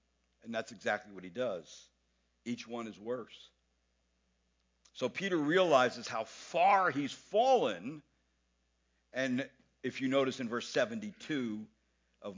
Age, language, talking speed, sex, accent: 60-79, English, 120 wpm, male, American